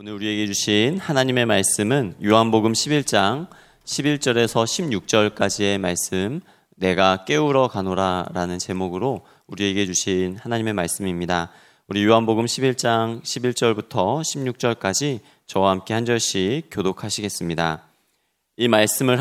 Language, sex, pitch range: Korean, male, 100-120 Hz